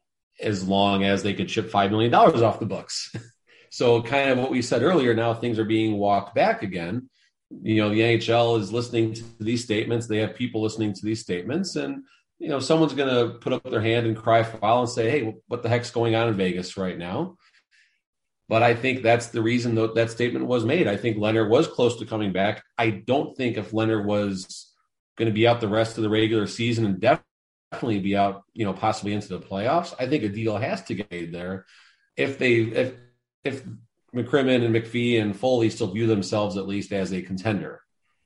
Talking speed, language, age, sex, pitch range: 220 wpm, English, 30-49, male, 100-120 Hz